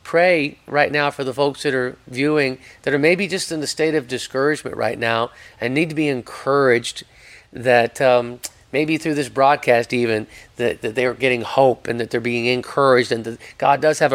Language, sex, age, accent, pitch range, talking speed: English, male, 40-59, American, 120-140 Hz, 200 wpm